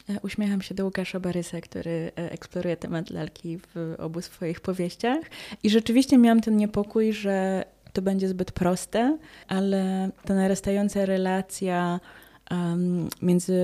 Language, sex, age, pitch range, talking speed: Polish, female, 20-39, 175-200 Hz, 130 wpm